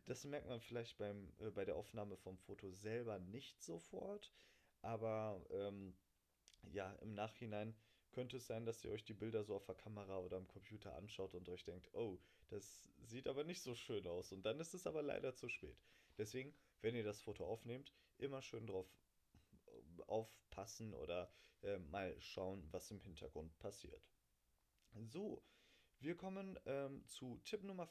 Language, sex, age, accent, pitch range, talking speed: German, male, 30-49, German, 100-135 Hz, 170 wpm